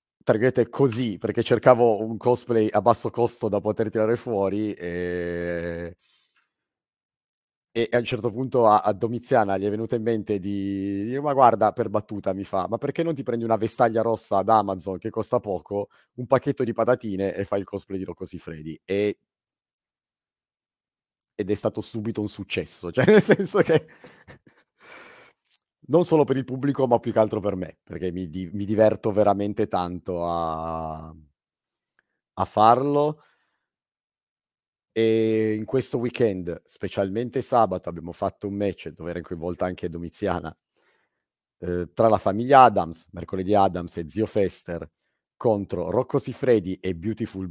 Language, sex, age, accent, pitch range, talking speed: Italian, male, 30-49, native, 95-120 Hz, 155 wpm